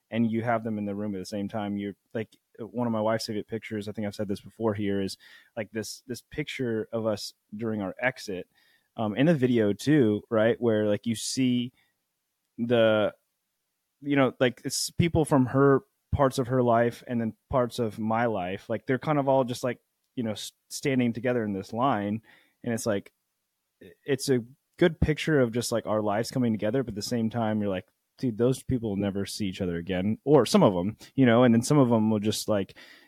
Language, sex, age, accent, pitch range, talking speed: English, male, 20-39, American, 100-120 Hz, 220 wpm